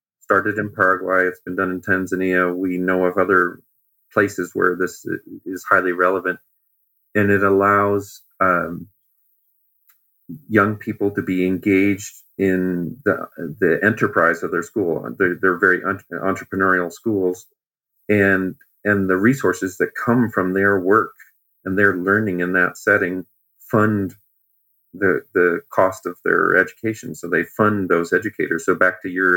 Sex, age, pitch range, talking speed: male, 40-59, 90-100 Hz, 145 wpm